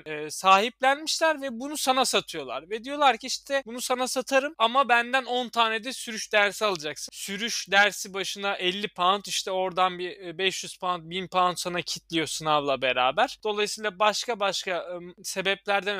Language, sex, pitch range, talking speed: Turkish, male, 170-215 Hz, 150 wpm